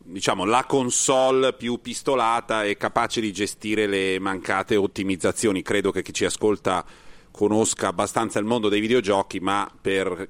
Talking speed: 145 wpm